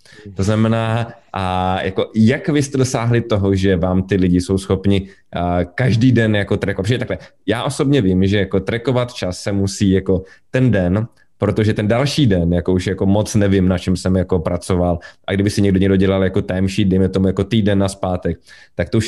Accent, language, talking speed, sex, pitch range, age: native, Czech, 205 wpm, male, 95-115 Hz, 20-39